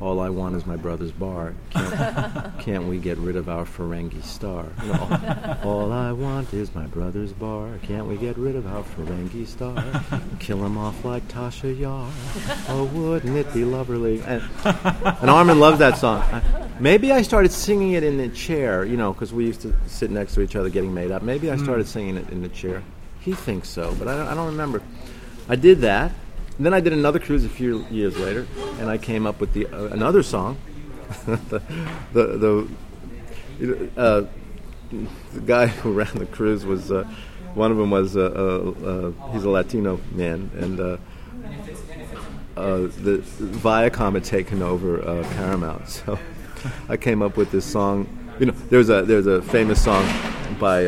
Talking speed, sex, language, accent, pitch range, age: 185 wpm, male, English, American, 95-125 Hz, 40-59